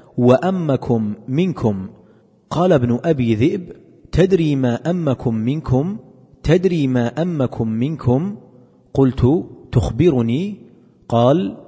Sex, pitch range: male, 120-155 Hz